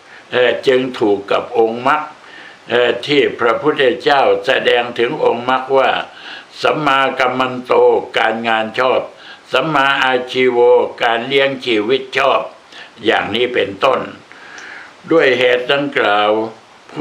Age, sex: 60-79, male